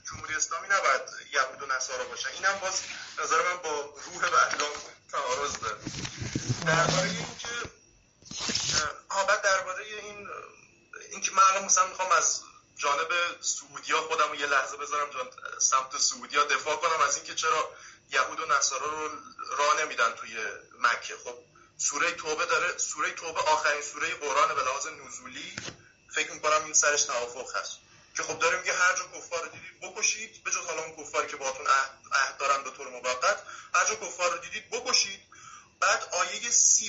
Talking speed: 160 wpm